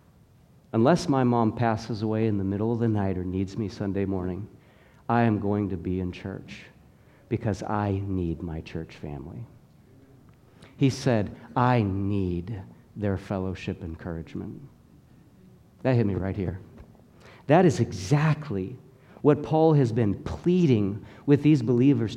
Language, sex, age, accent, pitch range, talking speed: English, male, 50-69, American, 105-135 Hz, 140 wpm